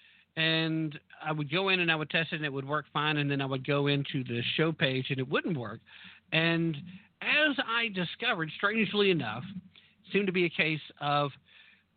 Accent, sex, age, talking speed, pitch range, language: American, male, 50-69, 200 wpm, 130-175 Hz, English